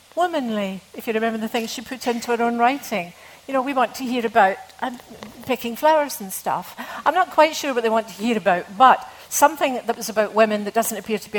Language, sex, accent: English, female, British